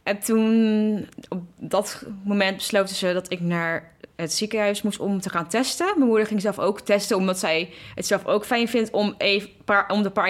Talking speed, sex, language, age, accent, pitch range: 205 wpm, female, Dutch, 20-39, Dutch, 180-220 Hz